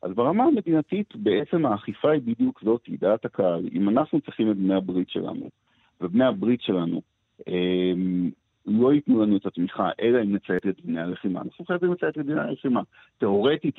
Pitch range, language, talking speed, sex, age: 95-130 Hz, Hebrew, 170 wpm, male, 50-69